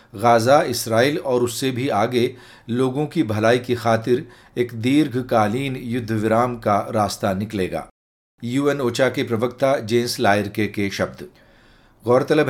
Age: 40-59